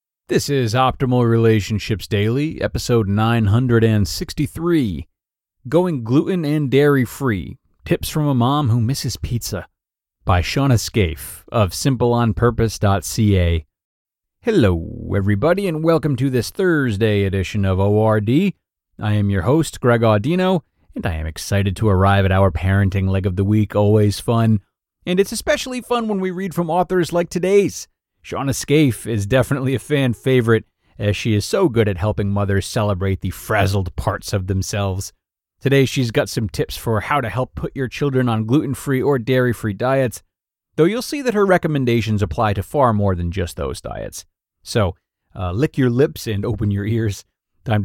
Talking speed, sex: 160 wpm, male